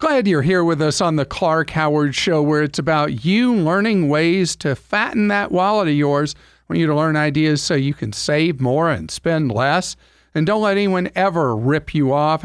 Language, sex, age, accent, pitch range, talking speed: English, male, 50-69, American, 125-175 Hz, 210 wpm